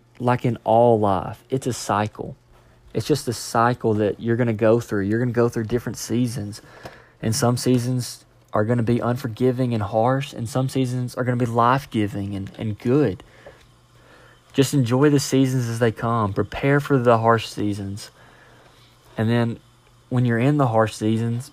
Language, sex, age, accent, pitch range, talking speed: English, male, 20-39, American, 110-130 Hz, 180 wpm